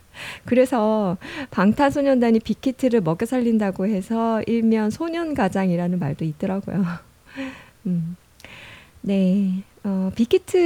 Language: Korean